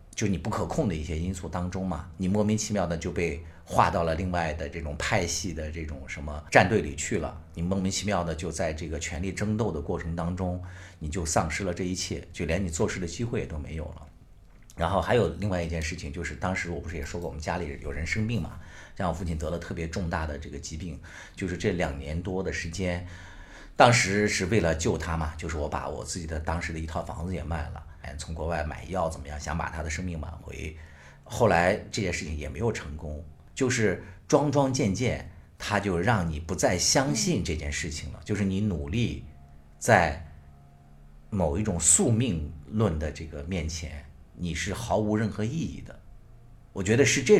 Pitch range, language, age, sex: 80-95 Hz, Chinese, 50-69, male